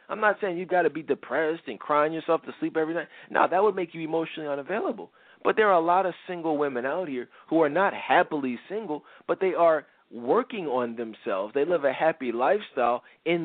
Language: English